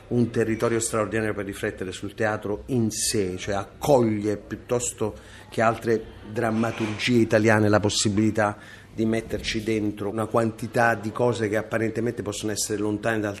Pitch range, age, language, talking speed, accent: 100-115 Hz, 30-49, Italian, 140 wpm, native